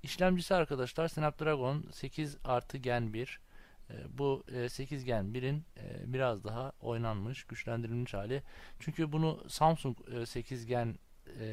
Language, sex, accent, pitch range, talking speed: Turkish, male, native, 110-140 Hz, 80 wpm